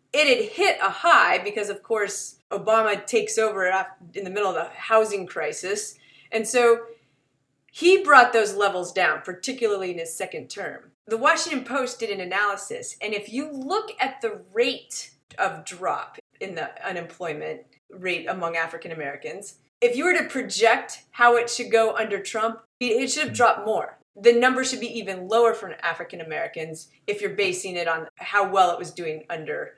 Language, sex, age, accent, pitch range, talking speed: English, female, 30-49, American, 190-255 Hz, 175 wpm